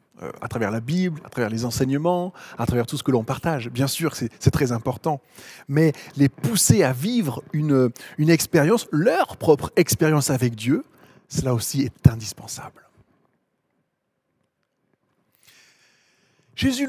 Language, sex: French, male